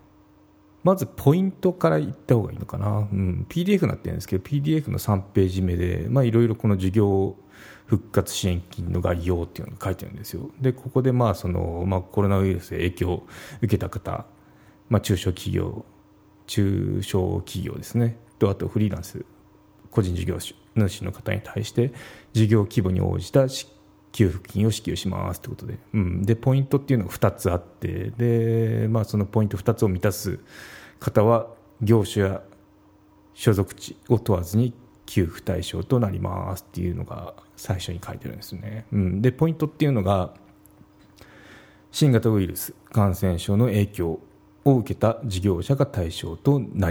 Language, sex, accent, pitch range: Japanese, male, native, 95-115 Hz